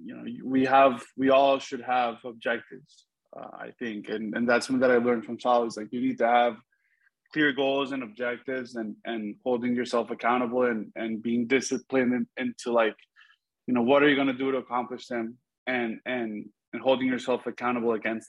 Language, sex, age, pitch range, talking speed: English, male, 20-39, 120-130 Hz, 190 wpm